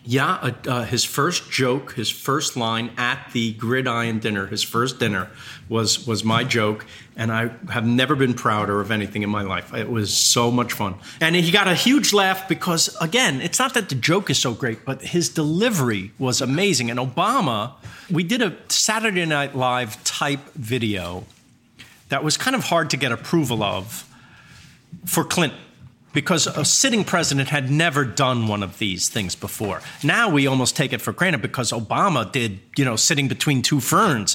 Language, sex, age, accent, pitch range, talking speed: English, male, 40-59, American, 115-155 Hz, 185 wpm